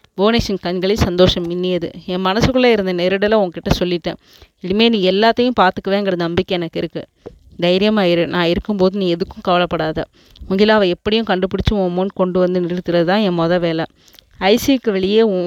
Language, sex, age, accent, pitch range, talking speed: Tamil, female, 20-39, native, 180-210 Hz, 135 wpm